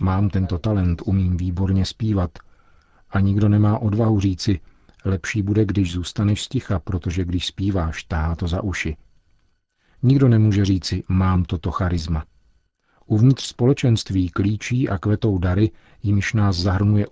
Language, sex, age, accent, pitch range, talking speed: Czech, male, 40-59, native, 90-105 Hz, 135 wpm